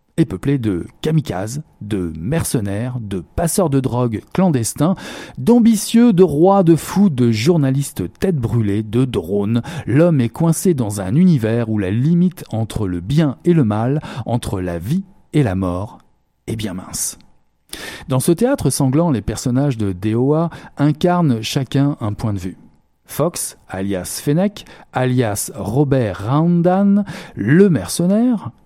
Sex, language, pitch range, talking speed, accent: male, French, 110-165 Hz, 140 wpm, French